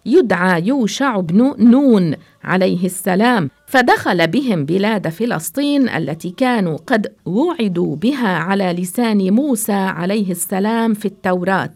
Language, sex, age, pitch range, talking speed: English, female, 50-69, 185-235 Hz, 110 wpm